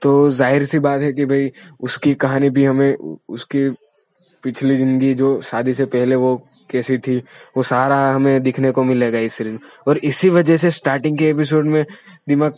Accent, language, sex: native, Hindi, male